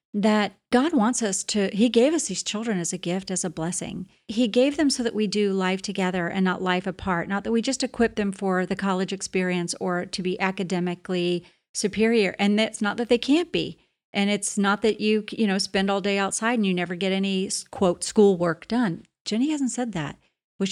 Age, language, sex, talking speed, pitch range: 40-59, English, female, 220 wpm, 185-240 Hz